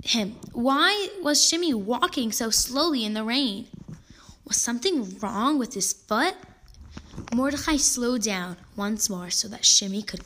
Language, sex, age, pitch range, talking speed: English, female, 10-29, 210-275 Hz, 145 wpm